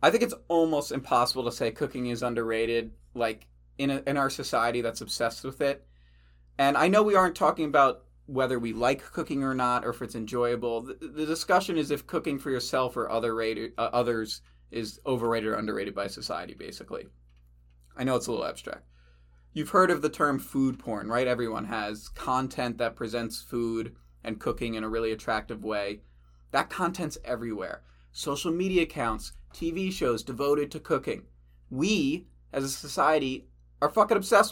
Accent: American